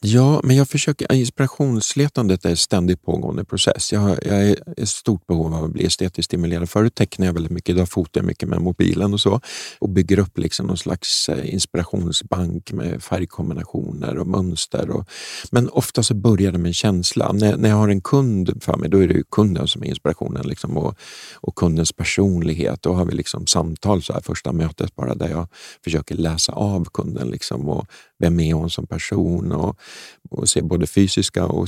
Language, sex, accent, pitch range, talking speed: Swedish, male, native, 85-105 Hz, 195 wpm